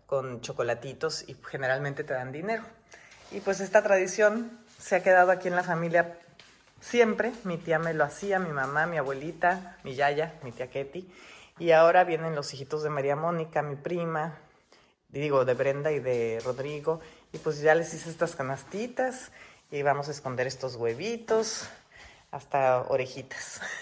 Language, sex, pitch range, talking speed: Spanish, female, 140-185 Hz, 160 wpm